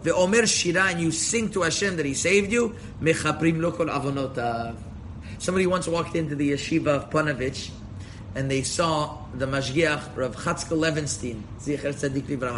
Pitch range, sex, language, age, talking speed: 125-165 Hz, male, English, 30-49, 135 wpm